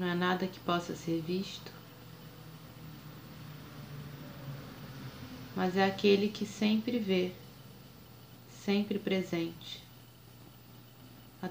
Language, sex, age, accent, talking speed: Portuguese, female, 20-39, Brazilian, 85 wpm